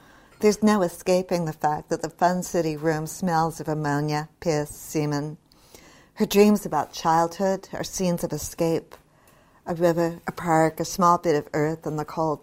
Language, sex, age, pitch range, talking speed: English, female, 60-79, 150-175 Hz, 170 wpm